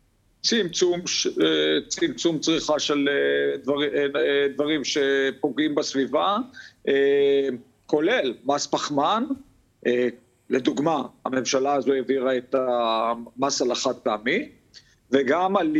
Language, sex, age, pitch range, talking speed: Hebrew, male, 50-69, 130-165 Hz, 80 wpm